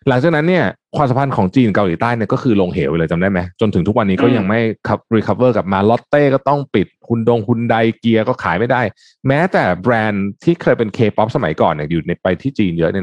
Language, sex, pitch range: Thai, male, 95-145 Hz